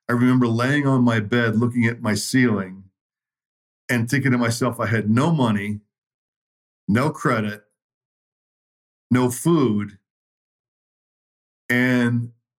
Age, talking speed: 50-69, 110 wpm